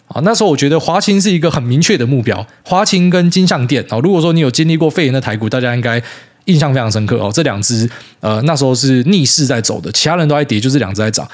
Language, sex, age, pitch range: Chinese, male, 20-39, 115-155 Hz